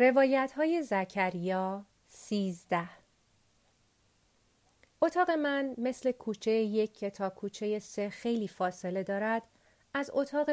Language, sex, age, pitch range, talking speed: Persian, female, 40-59, 195-245 Hz, 105 wpm